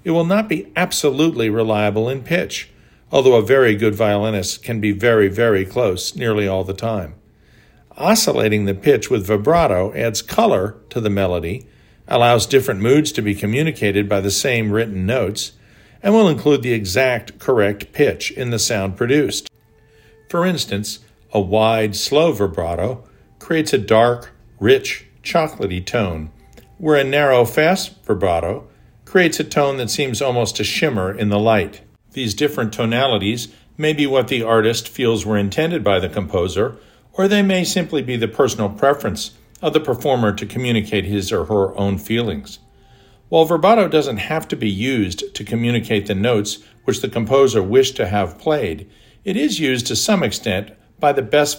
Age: 50-69